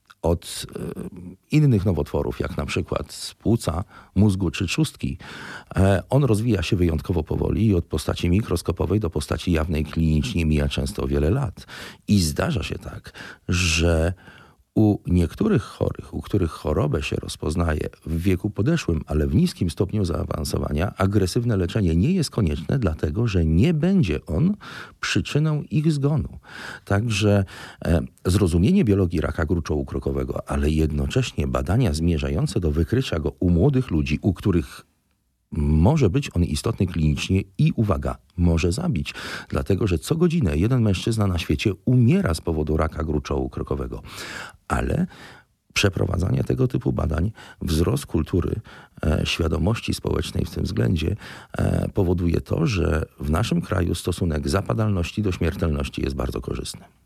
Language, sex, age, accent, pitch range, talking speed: Polish, male, 40-59, native, 80-105 Hz, 135 wpm